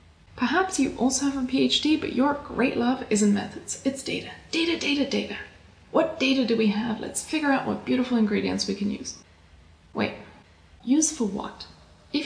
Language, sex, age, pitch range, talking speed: English, female, 20-39, 205-270 Hz, 175 wpm